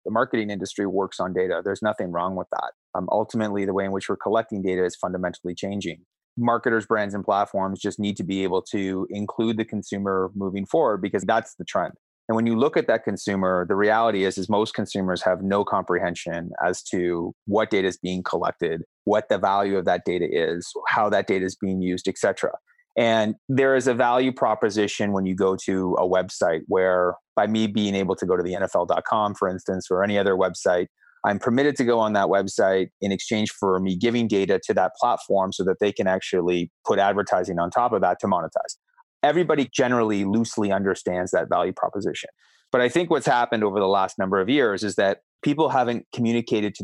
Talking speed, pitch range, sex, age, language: 205 wpm, 95-110 Hz, male, 30-49, English